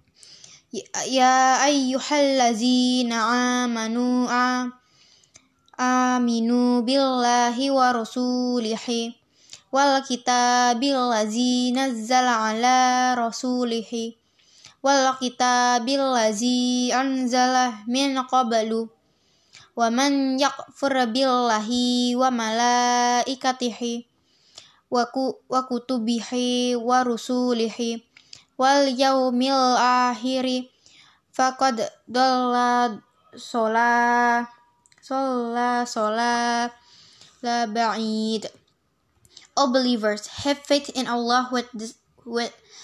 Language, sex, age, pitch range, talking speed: English, female, 10-29, 235-255 Hz, 45 wpm